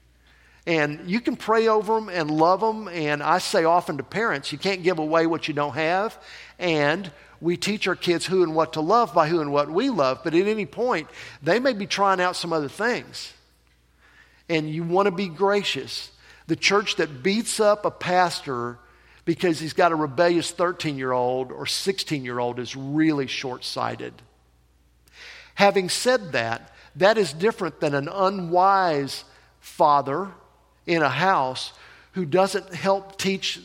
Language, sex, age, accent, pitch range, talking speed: English, male, 50-69, American, 140-185 Hz, 165 wpm